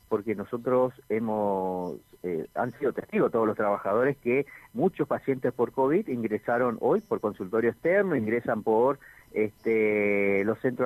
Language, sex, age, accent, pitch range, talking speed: Spanish, male, 50-69, Argentinian, 105-125 Hz, 140 wpm